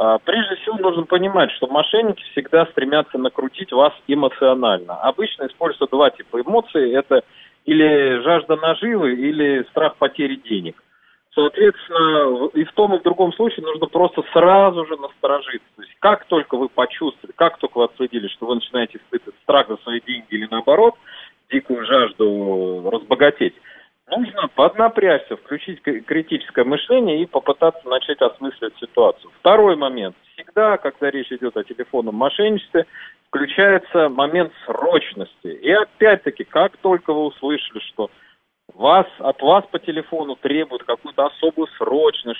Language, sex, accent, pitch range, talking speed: Russian, male, native, 135-195 Hz, 135 wpm